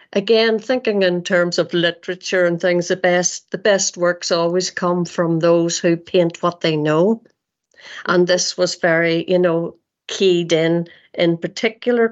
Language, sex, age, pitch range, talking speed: English, female, 50-69, 170-195 Hz, 155 wpm